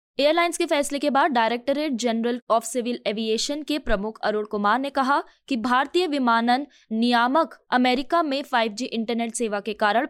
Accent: native